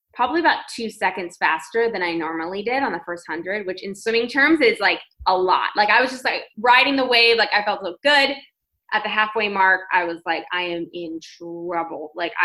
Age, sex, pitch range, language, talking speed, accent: 20-39, female, 180-230 Hz, English, 220 wpm, American